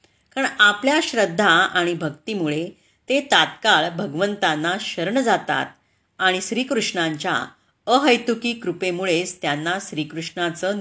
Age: 30-49